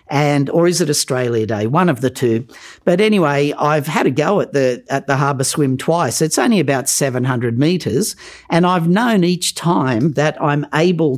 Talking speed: 195 wpm